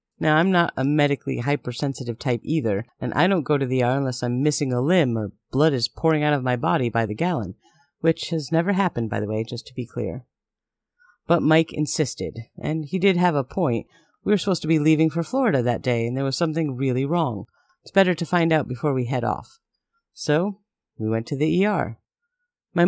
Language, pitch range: English, 130-185 Hz